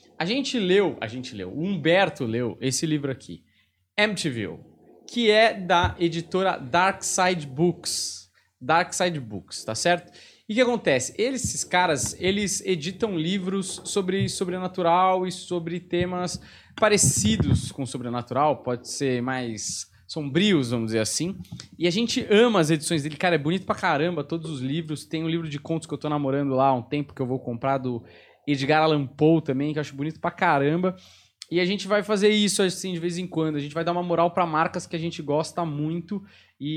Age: 20-39